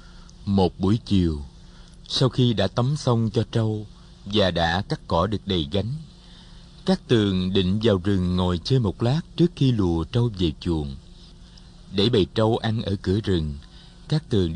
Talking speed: 170 wpm